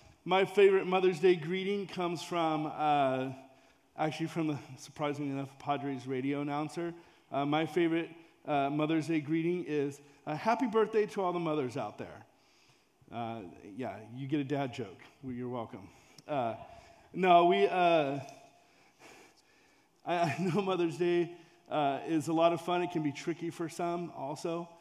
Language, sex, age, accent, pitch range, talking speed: English, male, 40-59, American, 135-165 Hz, 150 wpm